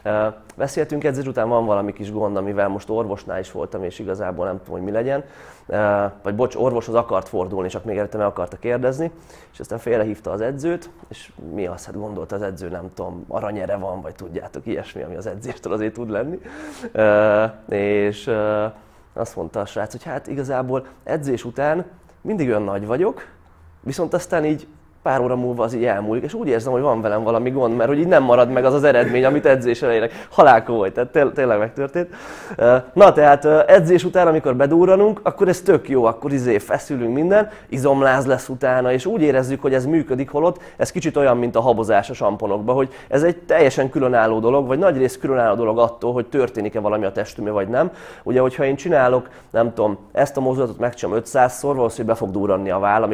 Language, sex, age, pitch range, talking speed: Hungarian, male, 20-39, 105-140 Hz, 195 wpm